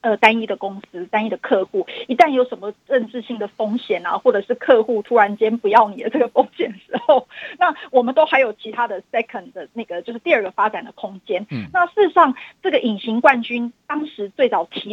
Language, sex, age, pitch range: Chinese, female, 30-49, 220-305 Hz